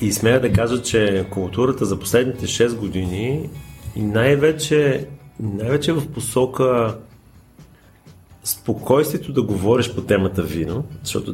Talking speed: 110 wpm